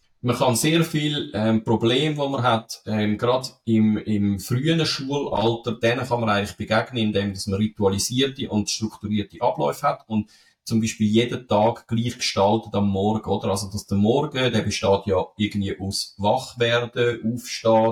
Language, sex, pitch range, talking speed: German, male, 105-125 Hz, 160 wpm